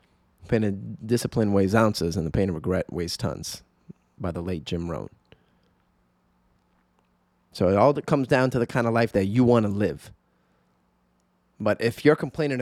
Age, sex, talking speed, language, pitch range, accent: 20-39, male, 170 wpm, English, 95-140 Hz, American